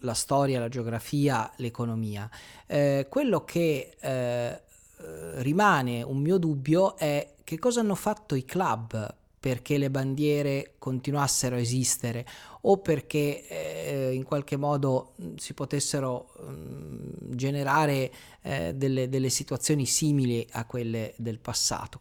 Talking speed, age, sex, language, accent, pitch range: 125 wpm, 30-49, male, Italian, native, 120-155 Hz